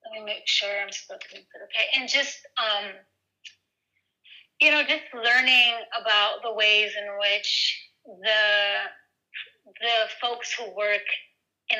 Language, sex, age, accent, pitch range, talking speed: English, female, 30-49, American, 200-245 Hz, 125 wpm